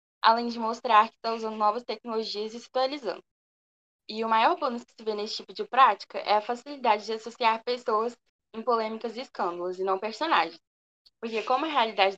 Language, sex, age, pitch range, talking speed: Portuguese, female, 10-29, 205-235 Hz, 190 wpm